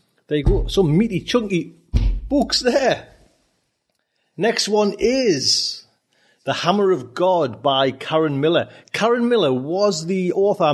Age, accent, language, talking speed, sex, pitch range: 30-49, British, English, 130 wpm, male, 120-160 Hz